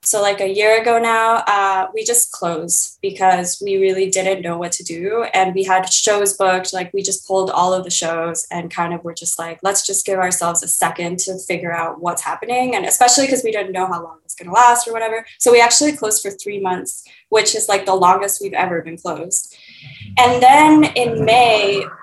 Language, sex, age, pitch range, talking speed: English, female, 20-39, 180-225 Hz, 225 wpm